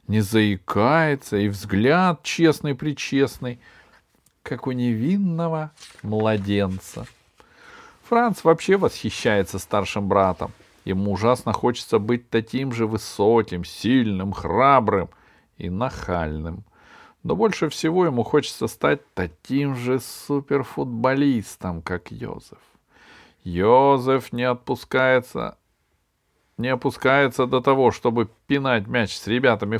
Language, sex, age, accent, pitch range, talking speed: Russian, male, 40-59, native, 105-145 Hz, 100 wpm